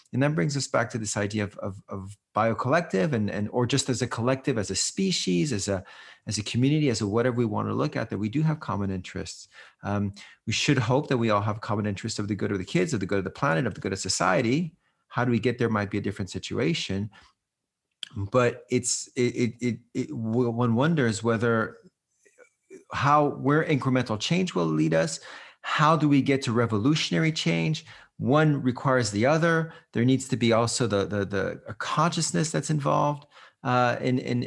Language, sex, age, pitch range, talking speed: English, male, 40-59, 105-140 Hz, 210 wpm